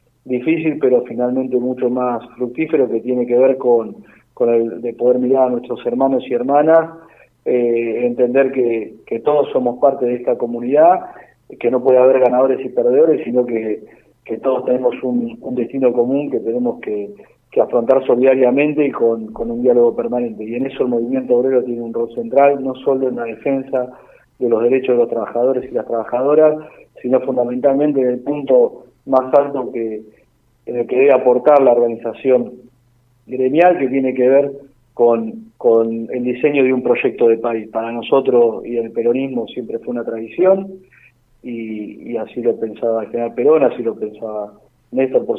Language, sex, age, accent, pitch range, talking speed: Spanish, male, 40-59, Argentinian, 120-135 Hz, 175 wpm